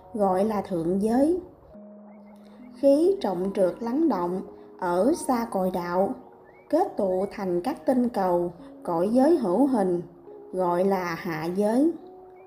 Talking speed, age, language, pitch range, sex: 130 wpm, 20-39, Vietnamese, 185-250 Hz, female